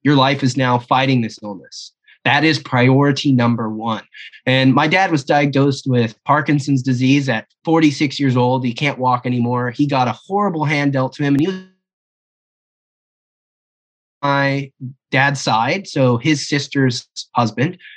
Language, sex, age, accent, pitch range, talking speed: English, male, 20-39, American, 125-150 Hz, 155 wpm